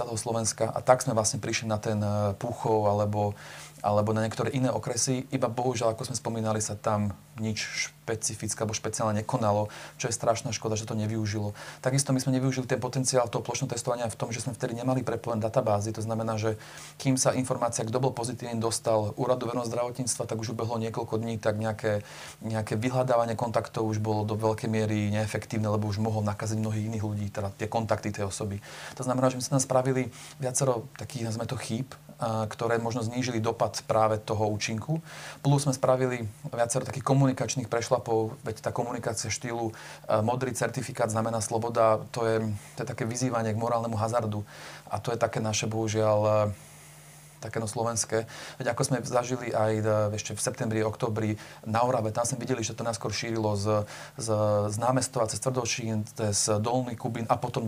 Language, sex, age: Slovak, male, 30-49